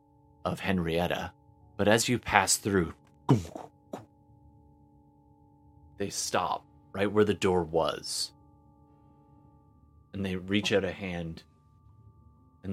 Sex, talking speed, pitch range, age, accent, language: male, 100 wpm, 85-105 Hz, 30-49, American, English